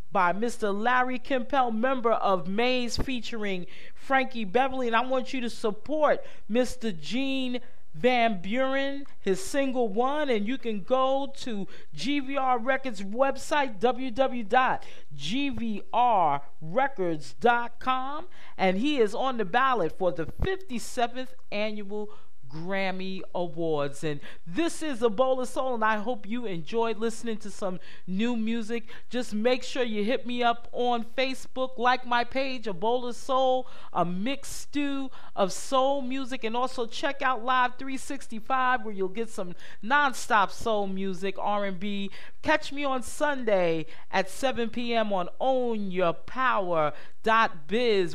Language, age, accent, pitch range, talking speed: English, 40-59, American, 205-260 Hz, 125 wpm